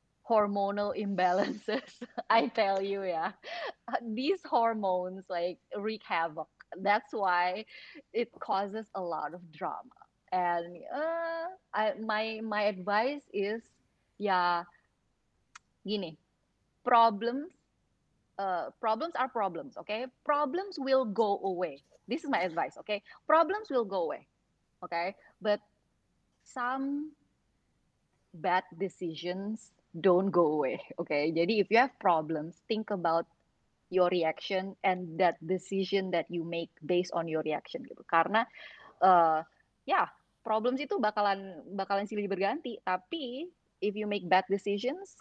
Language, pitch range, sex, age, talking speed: Indonesian, 180-235 Hz, female, 20-39, 125 wpm